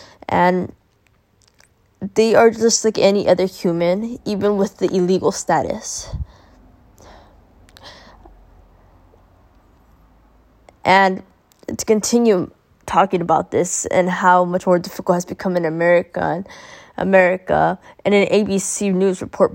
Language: English